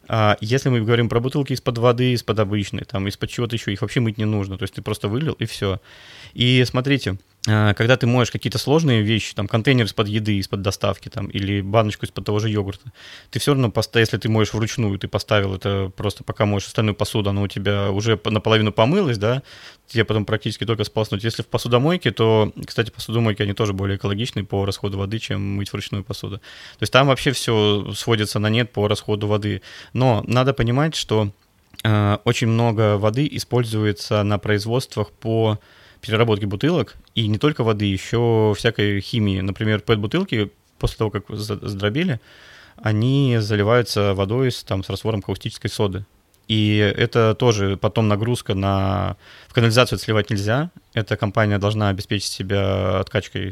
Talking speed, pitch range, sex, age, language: 175 wpm, 100-115 Hz, male, 20-39, Russian